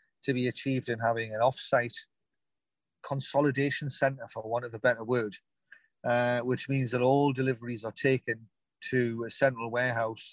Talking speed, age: 155 wpm, 40-59